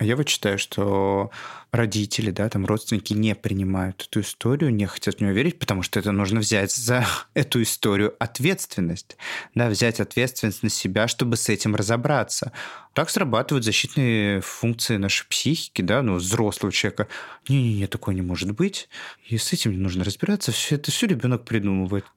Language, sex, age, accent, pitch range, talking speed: Russian, male, 20-39, native, 105-130 Hz, 170 wpm